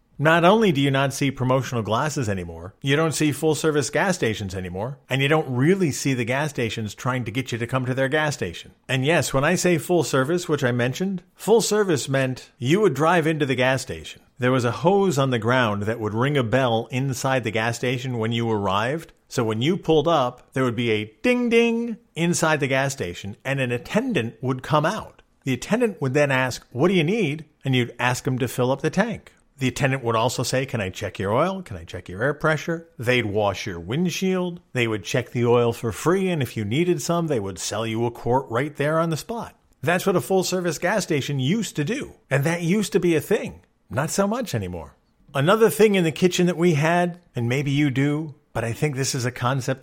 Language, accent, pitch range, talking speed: English, American, 120-160 Hz, 230 wpm